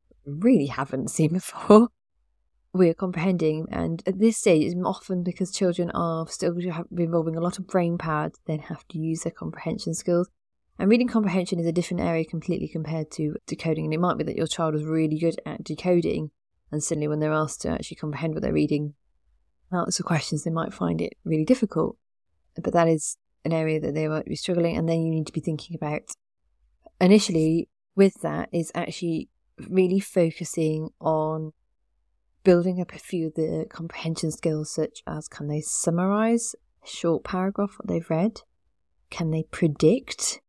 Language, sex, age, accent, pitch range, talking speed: English, female, 30-49, British, 155-185 Hz, 180 wpm